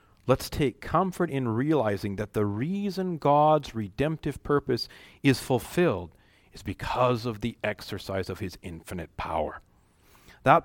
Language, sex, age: English, male, 40-59